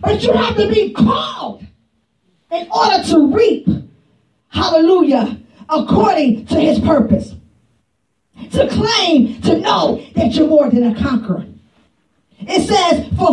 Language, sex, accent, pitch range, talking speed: English, female, American, 235-335 Hz, 125 wpm